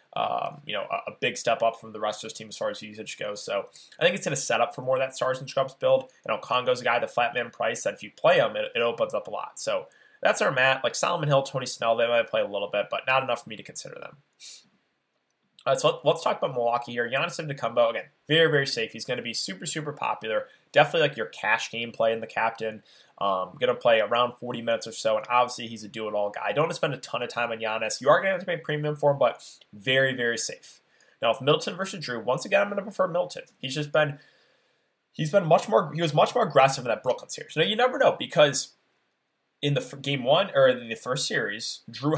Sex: male